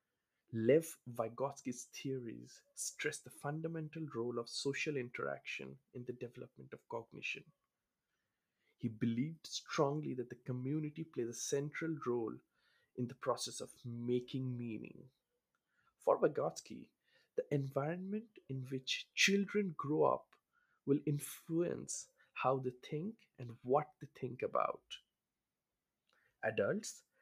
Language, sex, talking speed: English, male, 110 wpm